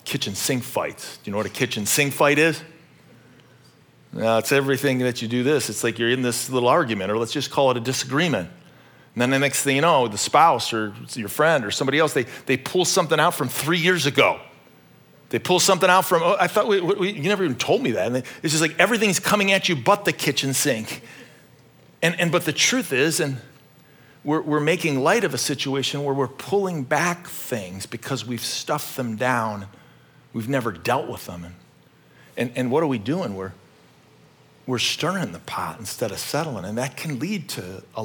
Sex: male